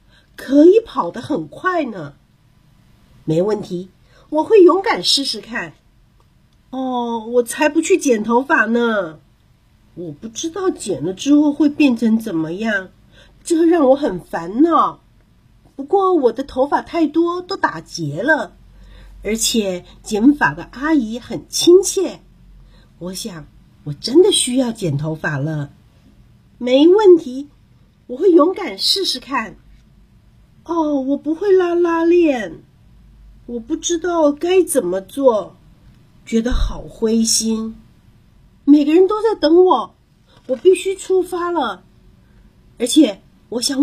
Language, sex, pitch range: Chinese, female, 200-320 Hz